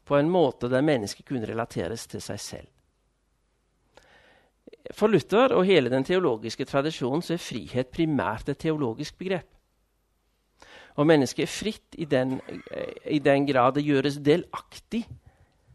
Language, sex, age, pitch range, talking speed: Danish, male, 50-69, 120-165 Hz, 135 wpm